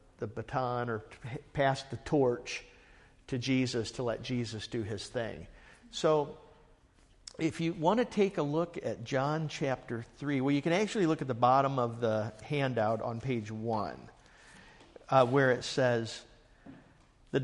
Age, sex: 50-69, male